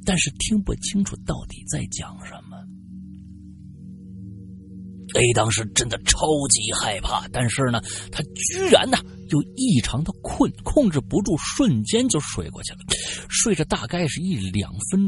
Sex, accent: male, native